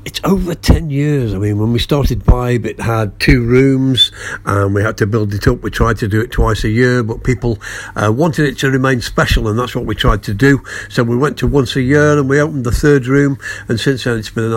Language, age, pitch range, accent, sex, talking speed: English, 60-79, 105-125 Hz, British, male, 260 wpm